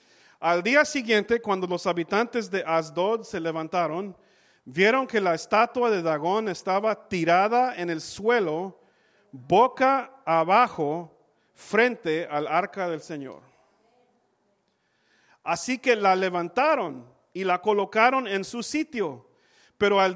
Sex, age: male, 40-59